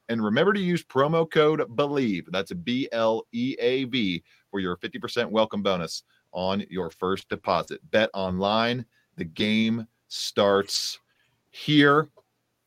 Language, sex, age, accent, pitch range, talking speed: English, male, 30-49, American, 100-125 Hz, 135 wpm